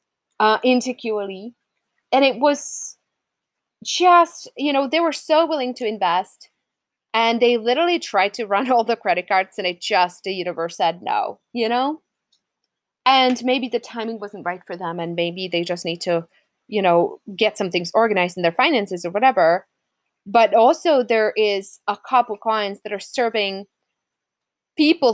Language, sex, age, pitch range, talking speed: English, female, 20-39, 185-245 Hz, 165 wpm